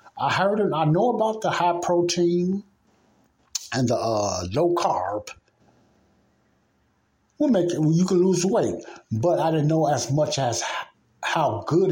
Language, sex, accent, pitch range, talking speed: English, male, American, 120-160 Hz, 150 wpm